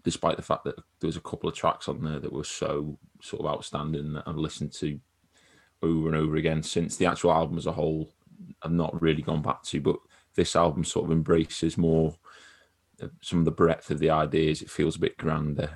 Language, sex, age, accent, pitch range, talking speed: English, male, 20-39, British, 80-85 Hz, 220 wpm